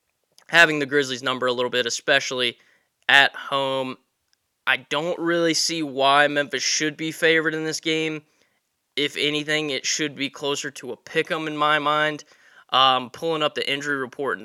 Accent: American